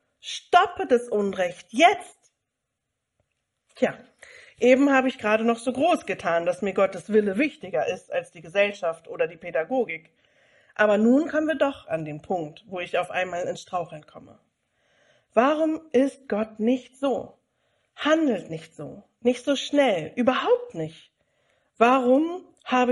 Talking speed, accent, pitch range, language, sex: 145 wpm, German, 195-275 Hz, German, female